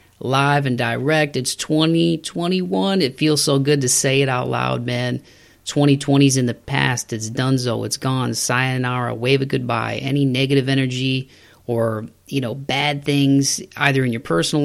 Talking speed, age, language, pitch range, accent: 165 wpm, 30-49, English, 115-130 Hz, American